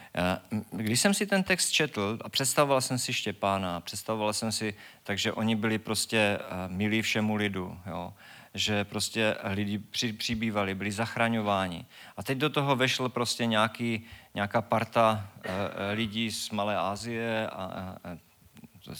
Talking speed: 140 wpm